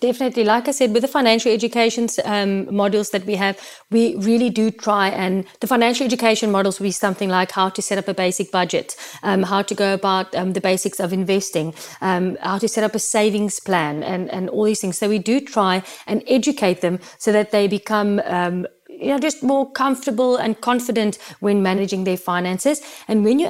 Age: 30-49